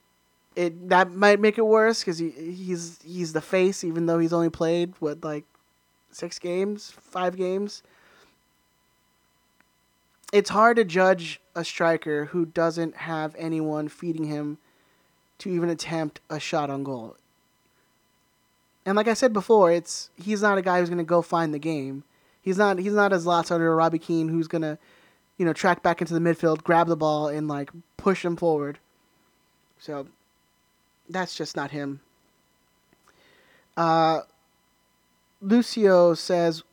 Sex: male